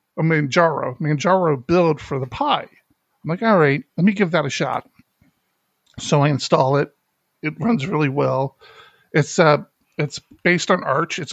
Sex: male